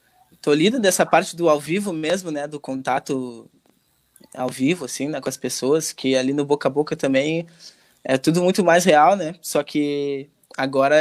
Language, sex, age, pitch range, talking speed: Portuguese, male, 20-39, 140-175 Hz, 185 wpm